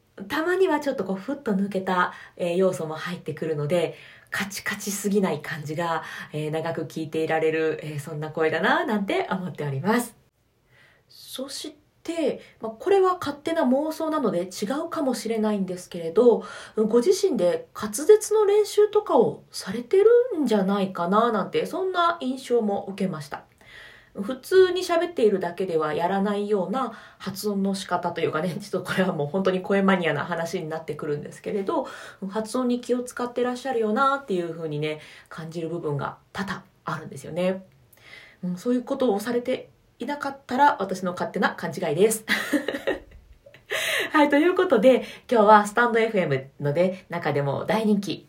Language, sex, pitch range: Japanese, female, 170-260 Hz